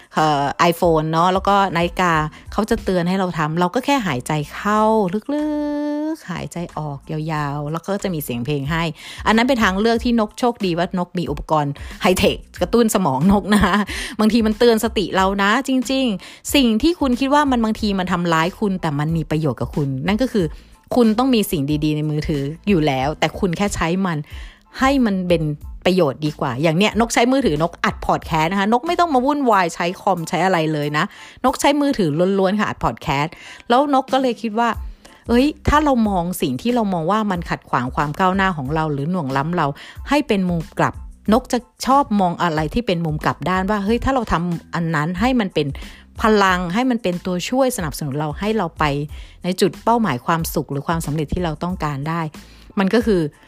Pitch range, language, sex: 155-225 Hz, Thai, female